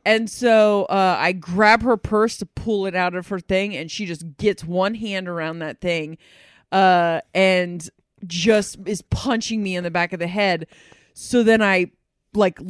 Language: English